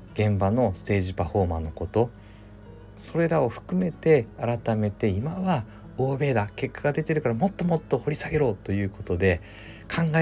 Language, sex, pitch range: Japanese, male, 100-140 Hz